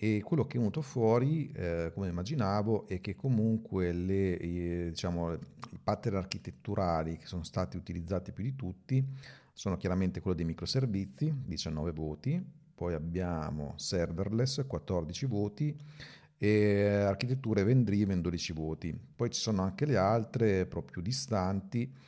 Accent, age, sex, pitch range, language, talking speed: native, 40-59, male, 85-105 Hz, Italian, 135 wpm